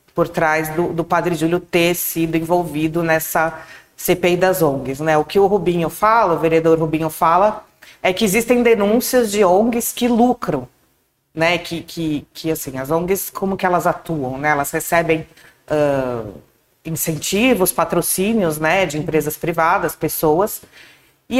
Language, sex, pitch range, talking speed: Portuguese, female, 160-205 Hz, 150 wpm